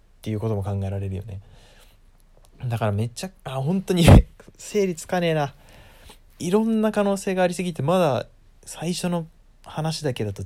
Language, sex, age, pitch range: Japanese, male, 20-39, 95-135 Hz